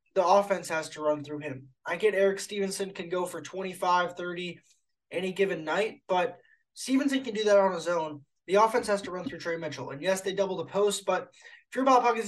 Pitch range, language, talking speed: 170-210 Hz, English, 225 wpm